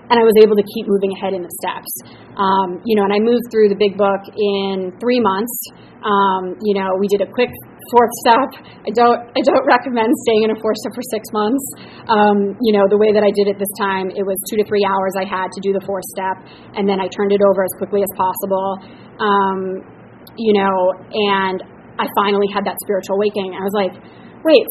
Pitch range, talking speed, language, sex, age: 195-240 Hz, 230 wpm, English, female, 30-49